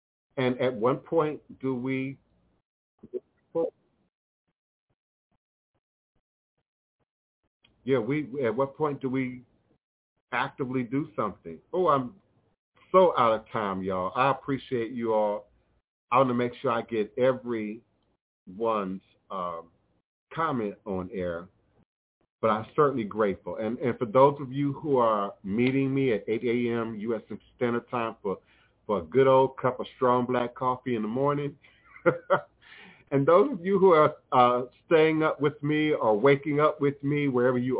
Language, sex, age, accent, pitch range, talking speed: English, male, 50-69, American, 105-140 Hz, 145 wpm